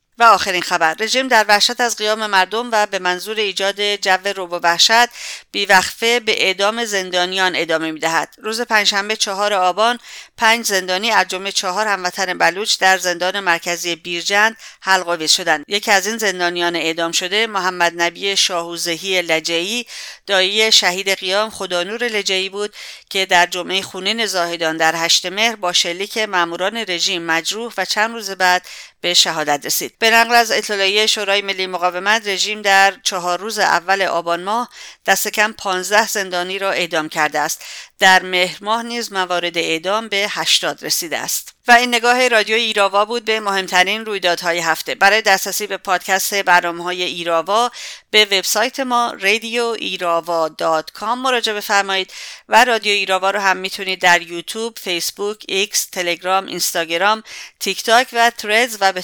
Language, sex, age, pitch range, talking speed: English, female, 50-69, 175-215 Hz, 150 wpm